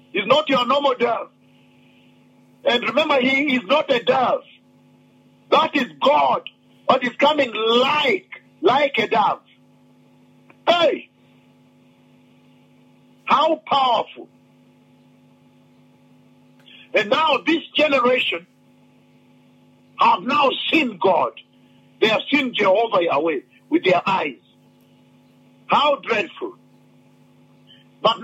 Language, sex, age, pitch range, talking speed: English, male, 50-69, 245-310 Hz, 95 wpm